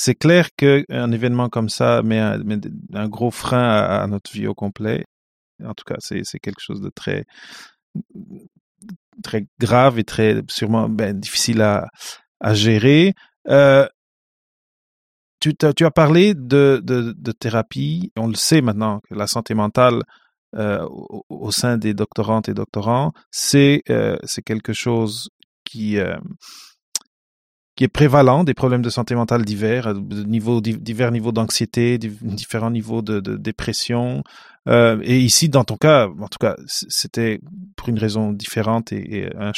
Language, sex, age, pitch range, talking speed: English, male, 30-49, 110-130 Hz, 160 wpm